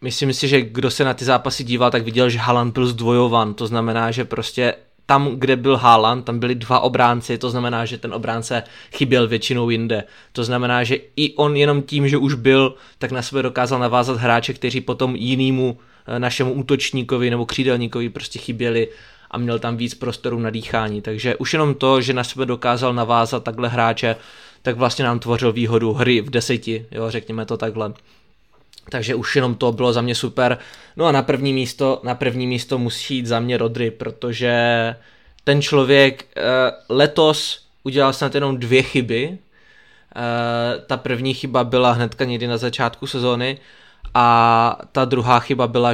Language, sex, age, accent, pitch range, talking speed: Czech, male, 20-39, native, 120-135 Hz, 180 wpm